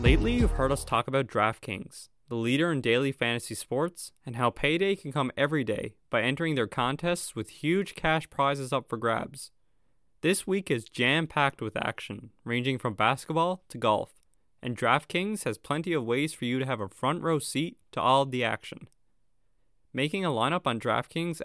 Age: 20-39